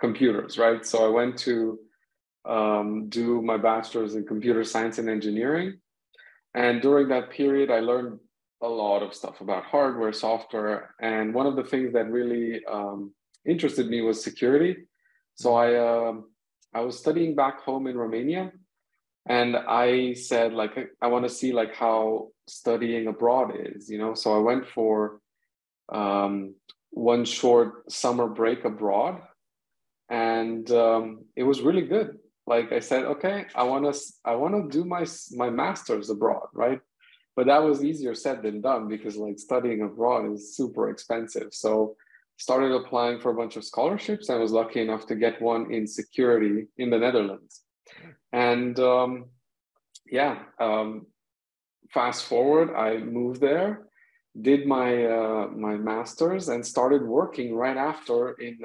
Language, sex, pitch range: English, male, 110-130 Hz